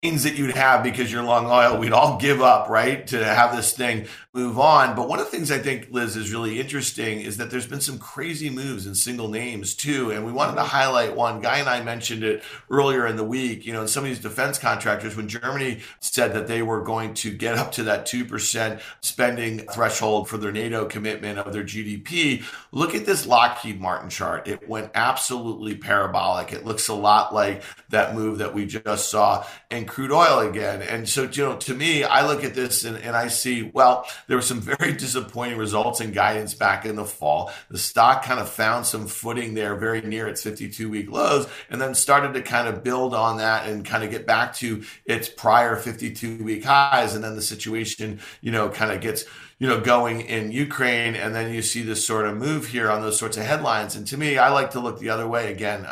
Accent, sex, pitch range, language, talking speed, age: American, male, 110-130 Hz, English, 225 wpm, 50-69